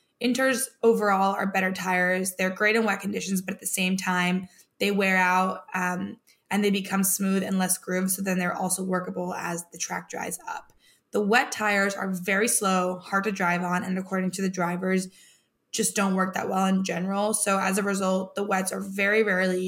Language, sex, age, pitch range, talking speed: English, female, 20-39, 180-205 Hz, 205 wpm